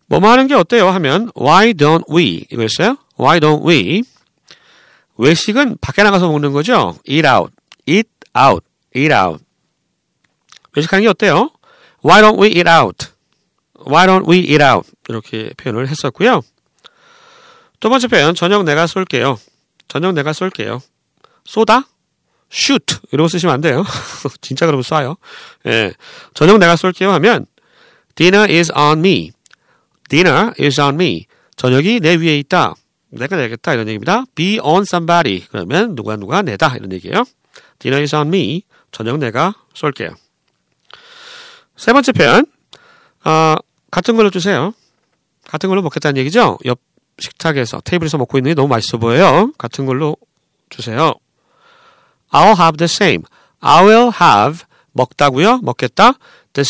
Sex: male